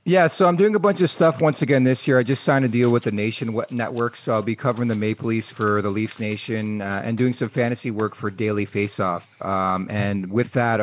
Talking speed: 255 wpm